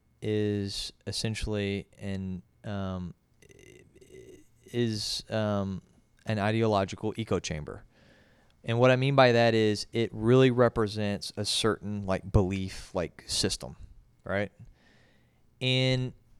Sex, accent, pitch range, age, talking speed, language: male, American, 100-120 Hz, 20-39, 105 wpm, English